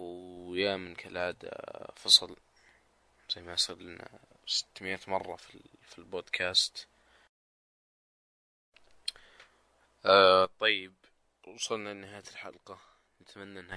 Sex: male